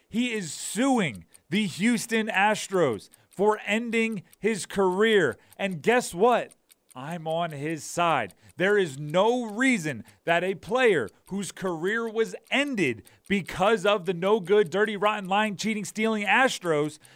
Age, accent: 30-49, American